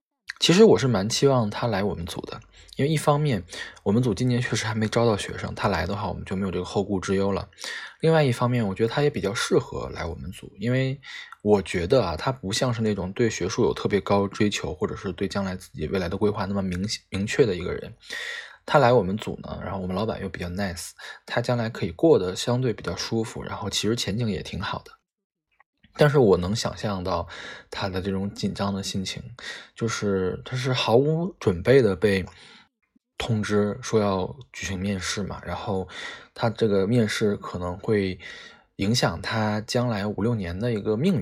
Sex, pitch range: male, 100-120 Hz